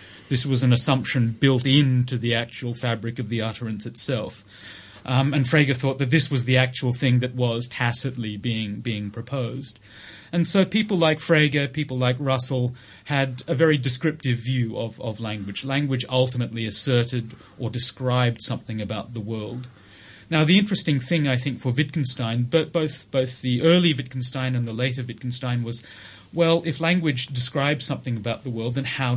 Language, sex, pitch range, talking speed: English, male, 115-140 Hz, 170 wpm